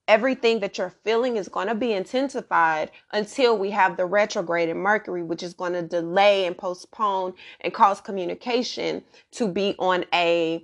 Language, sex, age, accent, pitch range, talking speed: English, female, 30-49, American, 180-225 Hz, 170 wpm